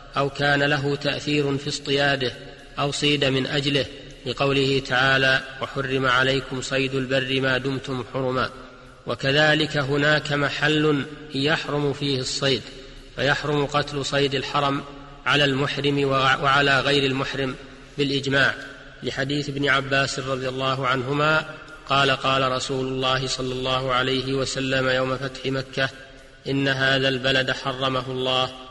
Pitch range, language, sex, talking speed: 130-140 Hz, Arabic, male, 120 wpm